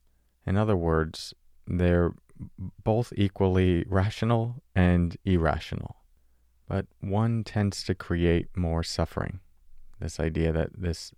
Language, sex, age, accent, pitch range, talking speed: English, male, 30-49, American, 80-95 Hz, 105 wpm